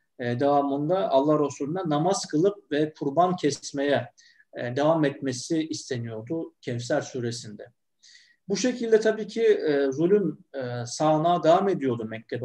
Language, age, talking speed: Turkish, 50-69, 125 wpm